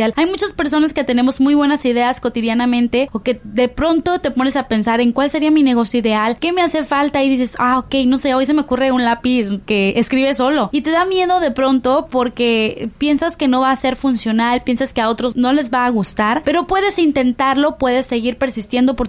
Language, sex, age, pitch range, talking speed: Spanish, female, 20-39, 240-310 Hz, 225 wpm